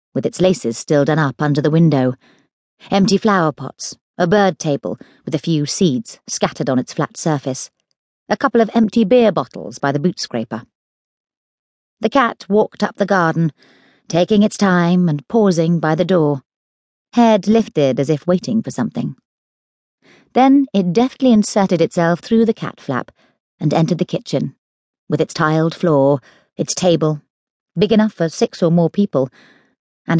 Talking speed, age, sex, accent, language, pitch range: 165 wpm, 40-59, female, British, English, 145-200 Hz